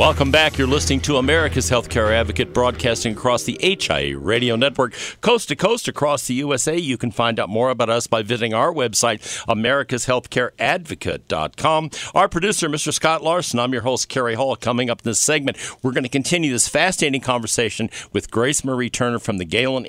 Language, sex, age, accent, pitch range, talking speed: English, male, 50-69, American, 110-135 Hz, 185 wpm